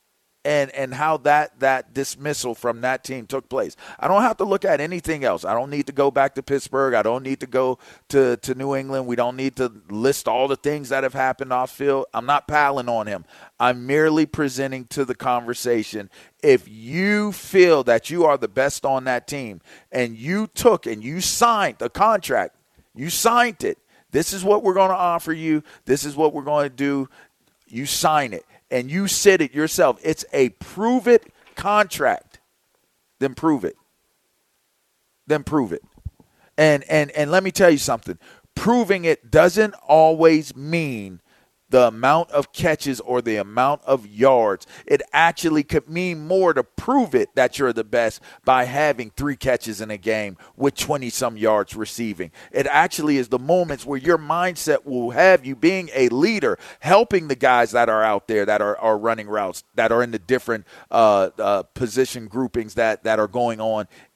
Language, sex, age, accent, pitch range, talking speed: English, male, 40-59, American, 120-160 Hz, 190 wpm